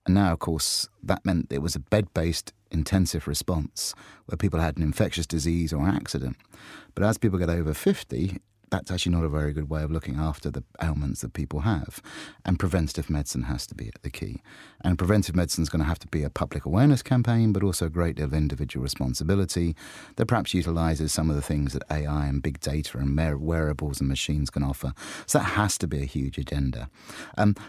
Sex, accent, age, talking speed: male, British, 30-49, 210 wpm